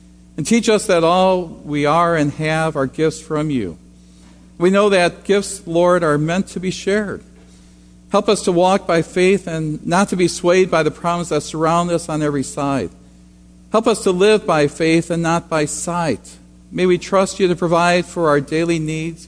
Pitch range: 140-180 Hz